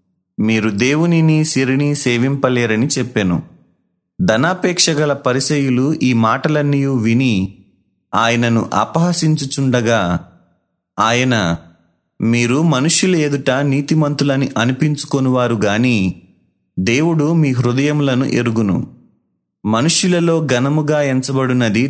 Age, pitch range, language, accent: 30-49, 115-150 Hz, Telugu, native